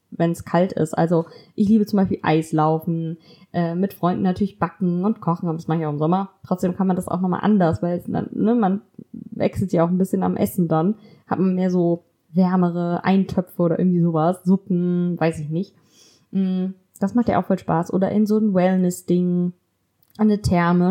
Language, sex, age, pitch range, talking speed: German, female, 20-39, 175-200 Hz, 200 wpm